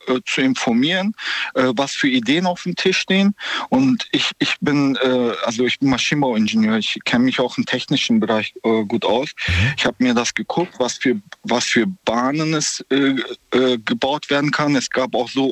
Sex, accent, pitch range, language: male, German, 130-185 Hz, German